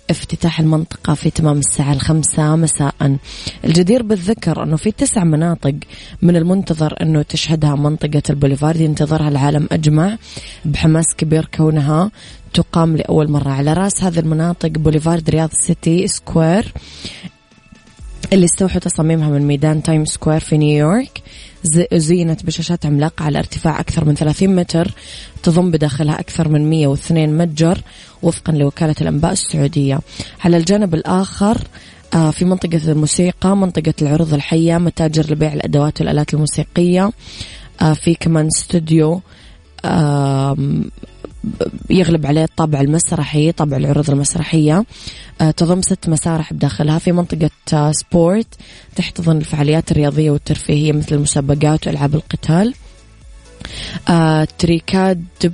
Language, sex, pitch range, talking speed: Arabic, female, 150-175 Hz, 115 wpm